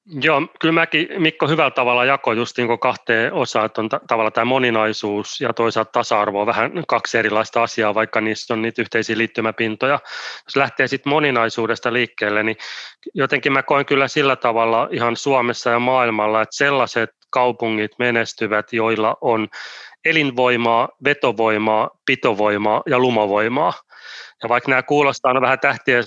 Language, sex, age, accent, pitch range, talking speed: Finnish, male, 30-49, native, 110-130 Hz, 145 wpm